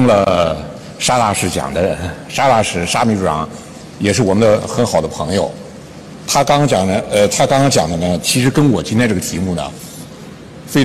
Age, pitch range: 60-79, 95-125 Hz